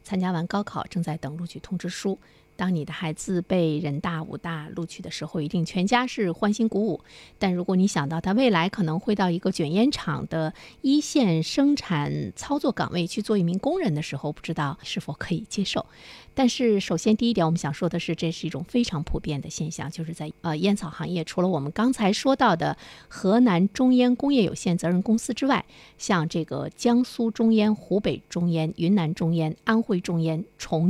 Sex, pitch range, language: female, 160-215 Hz, Chinese